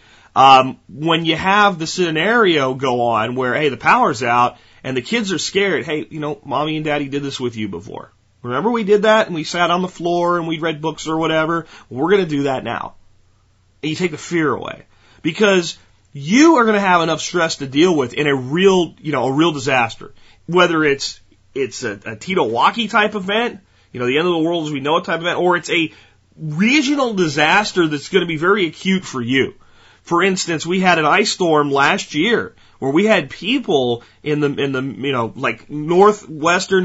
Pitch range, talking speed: 140-185 Hz, 210 wpm